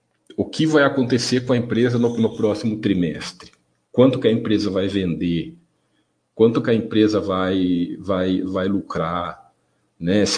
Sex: male